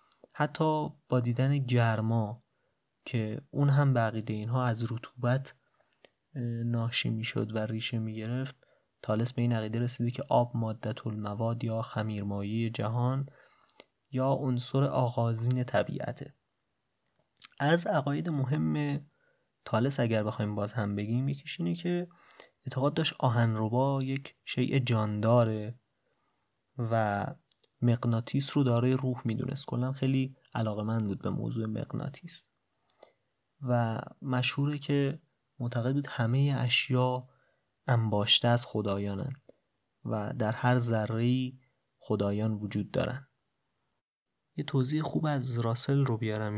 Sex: male